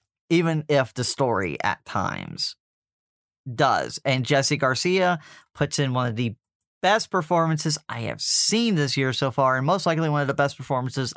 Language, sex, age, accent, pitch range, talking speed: English, male, 30-49, American, 145-200 Hz, 170 wpm